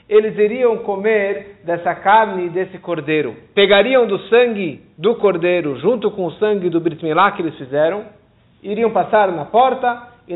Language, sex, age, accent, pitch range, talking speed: Portuguese, male, 50-69, Brazilian, 185-235 Hz, 150 wpm